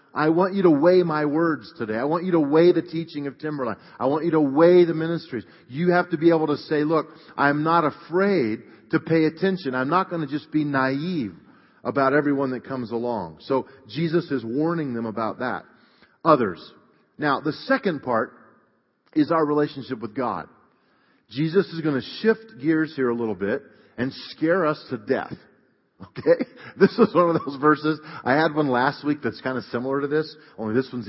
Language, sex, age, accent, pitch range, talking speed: English, male, 40-59, American, 135-170 Hz, 200 wpm